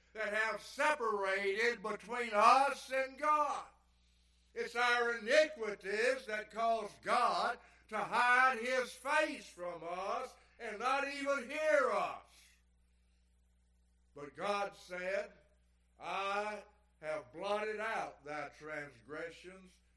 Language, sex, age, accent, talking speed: English, male, 60-79, American, 100 wpm